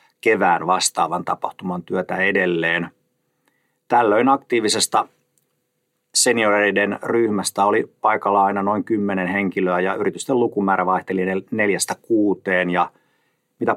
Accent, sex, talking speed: native, male, 95 wpm